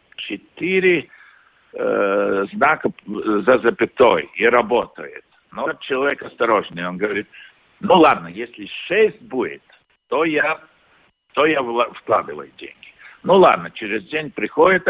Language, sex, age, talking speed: Russian, male, 60-79, 115 wpm